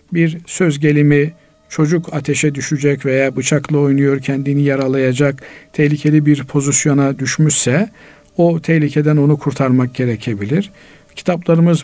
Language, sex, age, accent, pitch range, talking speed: Turkish, male, 50-69, native, 140-165 Hz, 105 wpm